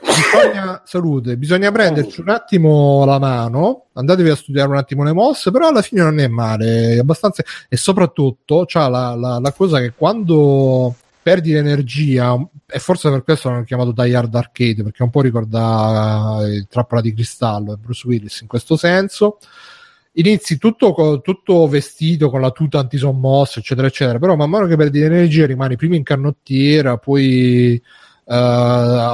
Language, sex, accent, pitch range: Italian, male, native, 120-155 Hz